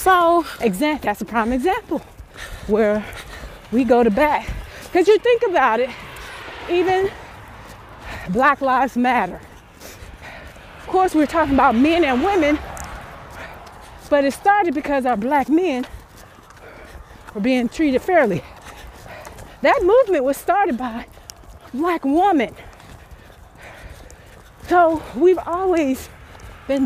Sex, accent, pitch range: female, American, 215-320 Hz